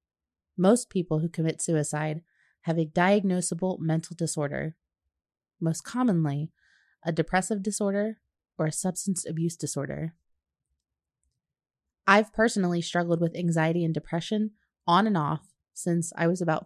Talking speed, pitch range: 125 wpm, 155-190 Hz